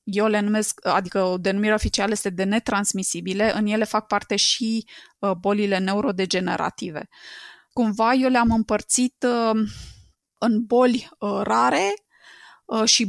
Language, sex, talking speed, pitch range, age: Romanian, female, 110 wpm, 205-235 Hz, 20-39